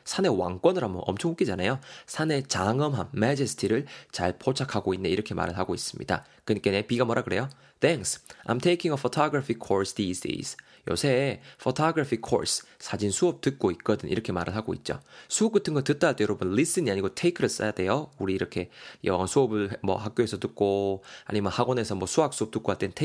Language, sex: Korean, male